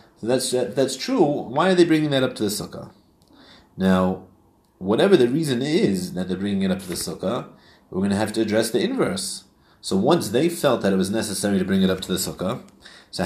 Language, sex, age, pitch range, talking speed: English, male, 30-49, 100-145 Hz, 225 wpm